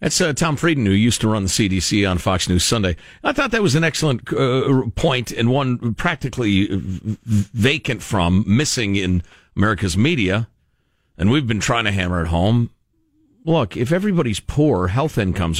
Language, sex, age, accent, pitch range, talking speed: English, male, 50-69, American, 95-135 Hz, 175 wpm